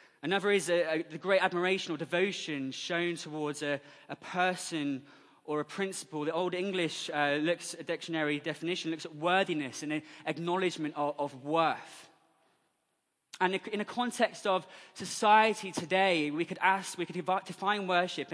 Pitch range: 150-190 Hz